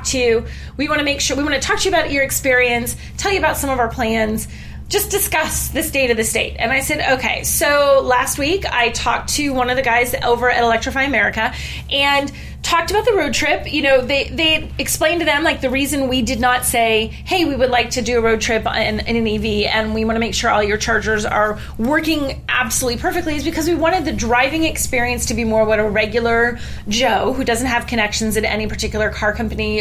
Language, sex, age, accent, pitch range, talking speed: English, female, 30-49, American, 225-280 Hz, 235 wpm